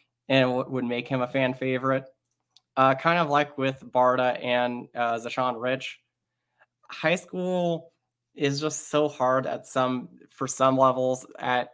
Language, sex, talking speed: English, male, 155 wpm